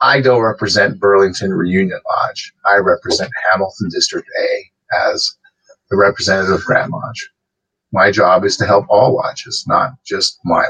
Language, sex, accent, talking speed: English, male, American, 150 wpm